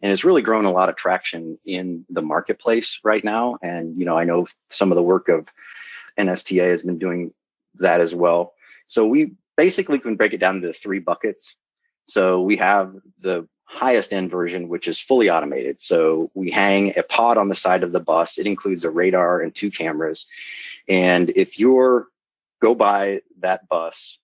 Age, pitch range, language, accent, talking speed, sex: 30-49, 85-100 Hz, English, American, 190 wpm, male